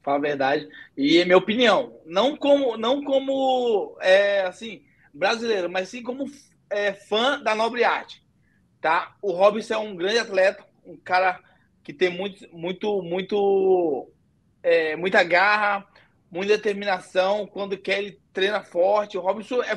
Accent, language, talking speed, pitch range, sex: Brazilian, Portuguese, 145 wpm, 180-220 Hz, male